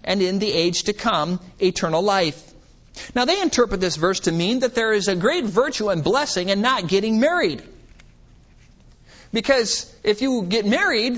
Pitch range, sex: 165-230 Hz, male